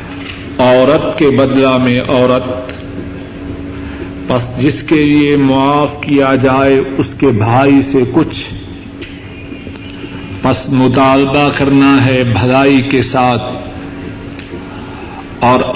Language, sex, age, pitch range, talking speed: Urdu, male, 50-69, 95-140 Hz, 95 wpm